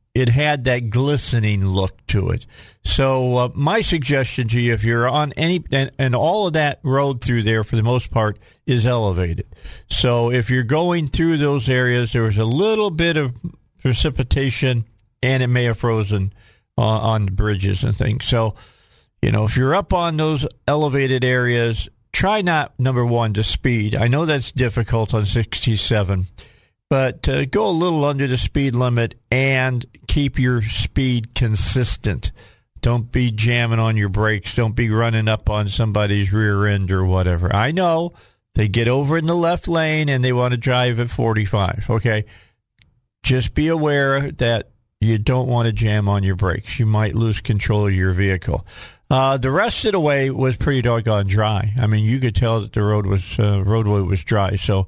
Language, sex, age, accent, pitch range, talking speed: English, male, 50-69, American, 105-130 Hz, 185 wpm